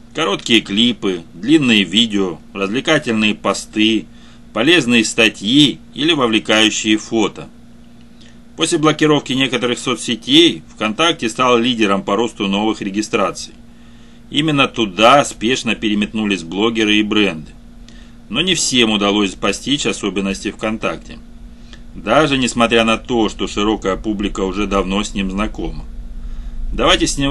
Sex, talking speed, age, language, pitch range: male, 110 wpm, 30-49, Russian, 105-125 Hz